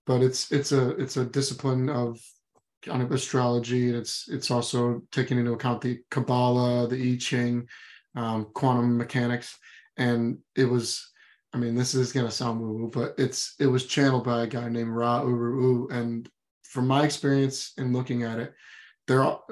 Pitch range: 120-135 Hz